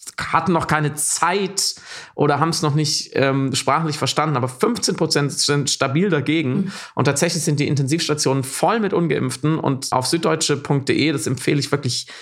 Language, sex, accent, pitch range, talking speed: German, male, German, 135-160 Hz, 155 wpm